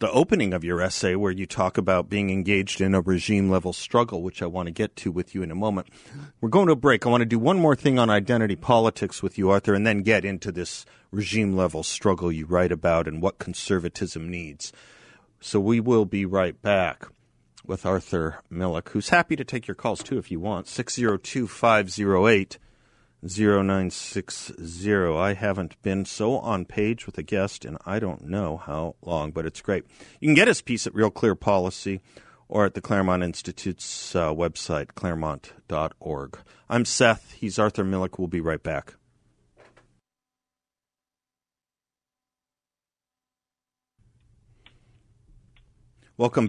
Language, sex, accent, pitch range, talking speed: English, male, American, 90-115 Hz, 165 wpm